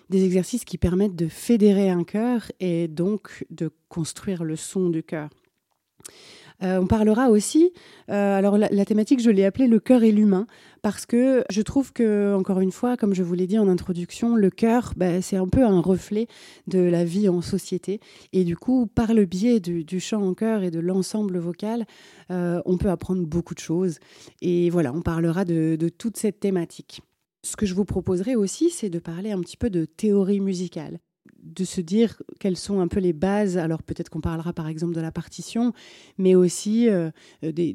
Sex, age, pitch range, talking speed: female, 30-49, 170-205 Hz, 200 wpm